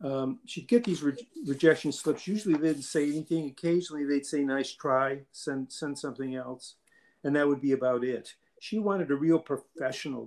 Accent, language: American, English